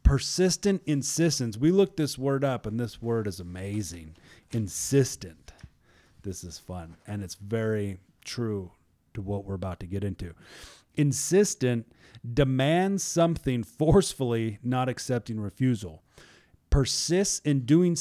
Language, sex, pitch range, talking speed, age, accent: English, male, 95-135 Hz, 125 wpm, 30-49, American